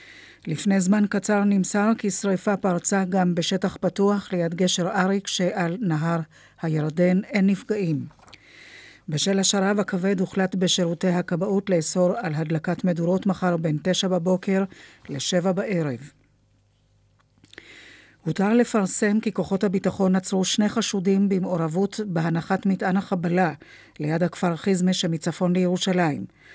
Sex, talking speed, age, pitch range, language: female, 115 wpm, 50-69, 170-195 Hz, Hebrew